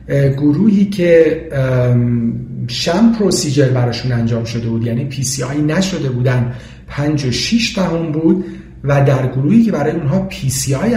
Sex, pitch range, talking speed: male, 125-185 Hz, 125 wpm